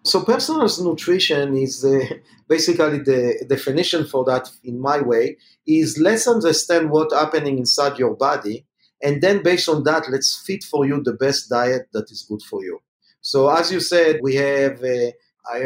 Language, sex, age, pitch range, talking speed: English, male, 50-69, 140-175 Hz, 175 wpm